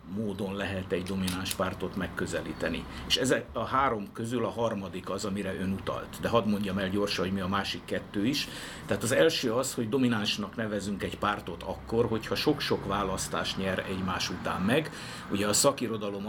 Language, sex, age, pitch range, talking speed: Hungarian, male, 50-69, 95-115 Hz, 175 wpm